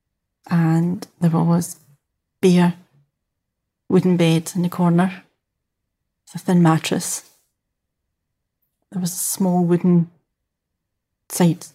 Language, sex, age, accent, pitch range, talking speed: English, female, 30-49, British, 160-180 Hz, 90 wpm